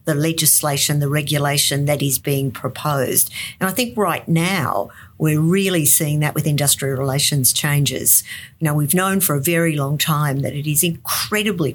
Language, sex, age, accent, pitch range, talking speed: English, female, 50-69, Australian, 140-180 Hz, 175 wpm